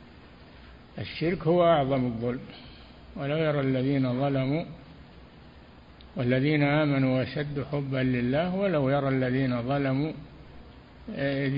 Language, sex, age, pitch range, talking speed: Arabic, male, 60-79, 120-155 Hz, 95 wpm